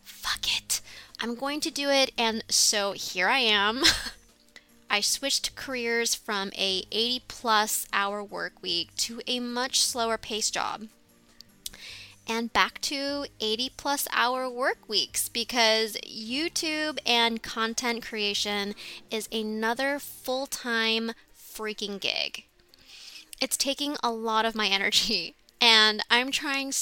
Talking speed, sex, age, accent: 130 wpm, female, 20-39, American